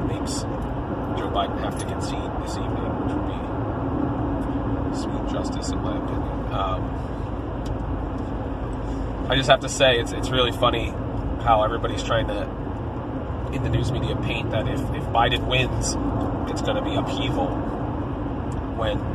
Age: 30-49